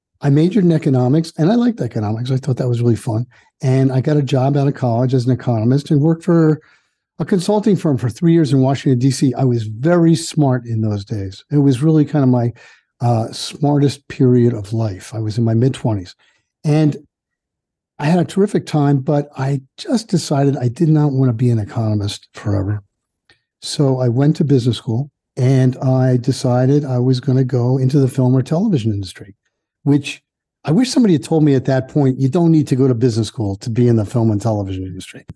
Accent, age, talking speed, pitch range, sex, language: American, 50-69, 210 wpm, 120-155 Hz, male, English